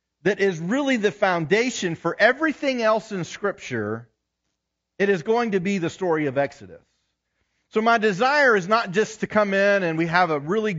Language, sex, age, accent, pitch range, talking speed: English, male, 40-59, American, 135-220 Hz, 185 wpm